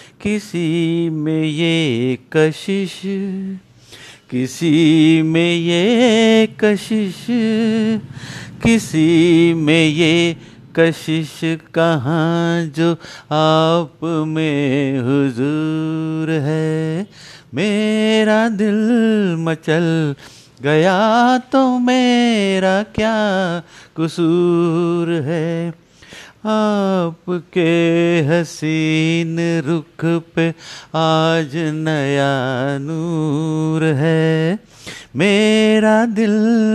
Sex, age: male, 50-69